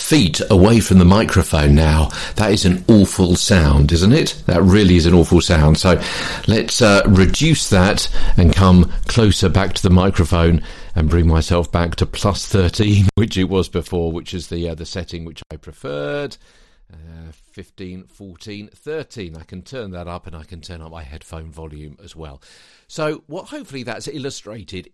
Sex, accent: male, British